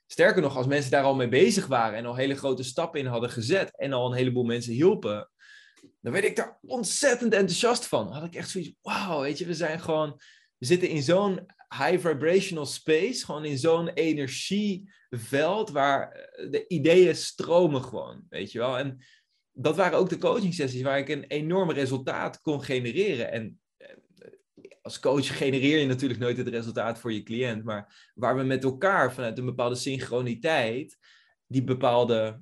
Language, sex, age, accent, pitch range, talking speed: Dutch, male, 20-39, Dutch, 125-180 Hz, 180 wpm